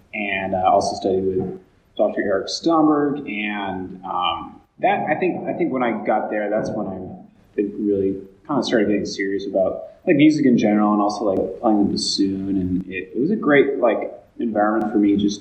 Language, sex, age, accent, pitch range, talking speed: English, male, 20-39, American, 95-105 Hz, 195 wpm